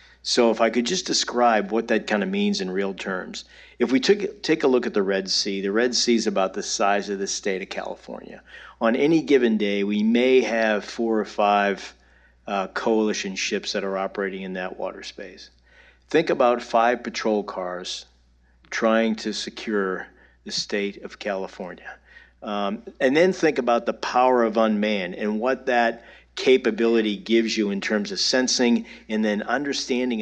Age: 50-69